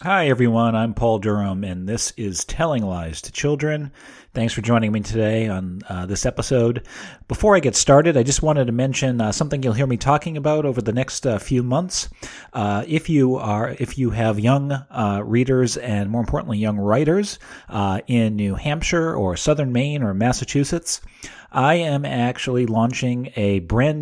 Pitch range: 105-135 Hz